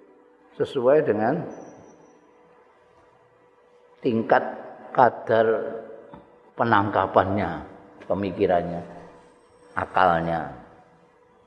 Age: 50-69